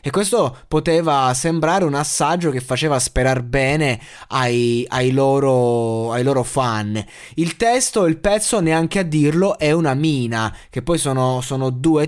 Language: Italian